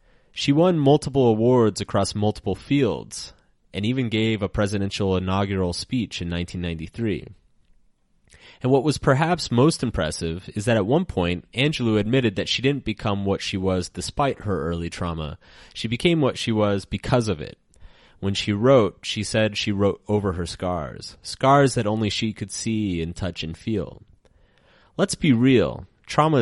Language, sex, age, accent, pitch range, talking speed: English, male, 30-49, American, 90-115 Hz, 165 wpm